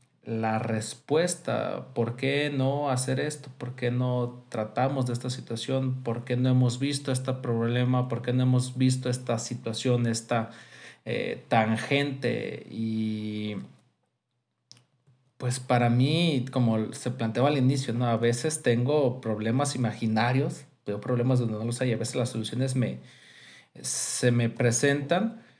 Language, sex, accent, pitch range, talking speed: Spanish, male, Mexican, 115-135 Hz, 135 wpm